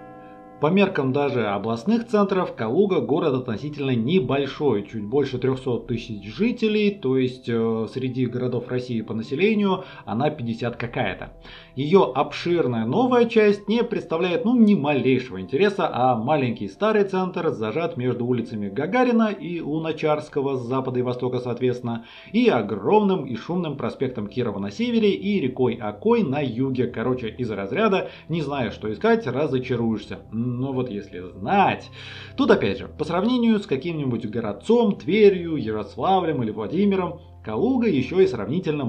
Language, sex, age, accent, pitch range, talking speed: Russian, male, 30-49, native, 115-175 Hz, 140 wpm